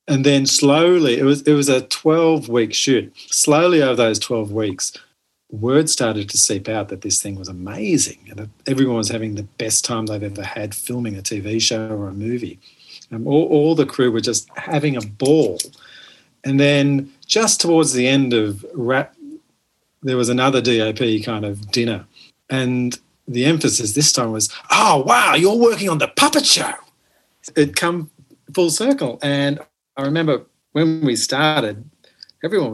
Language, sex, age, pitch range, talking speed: English, male, 40-59, 110-145 Hz, 170 wpm